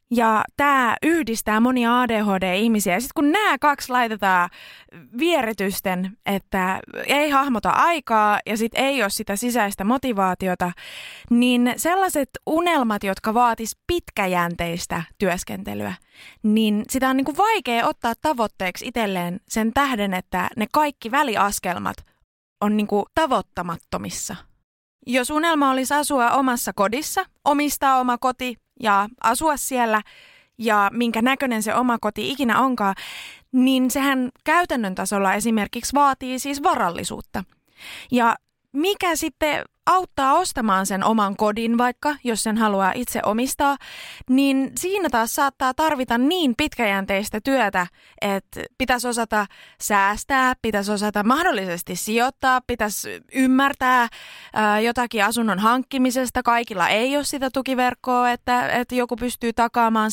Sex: female